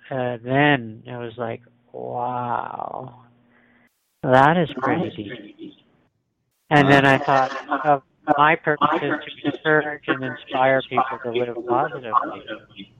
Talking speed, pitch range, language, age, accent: 115 wpm, 110-130 Hz, English, 50-69, American